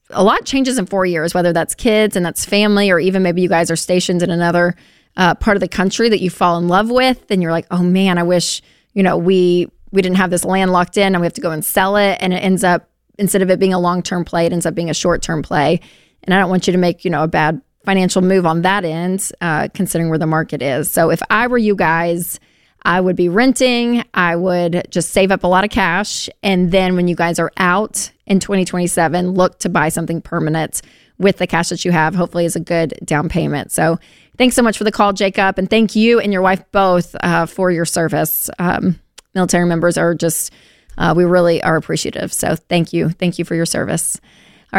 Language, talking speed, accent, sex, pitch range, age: English, 240 wpm, American, female, 170-195 Hz, 20-39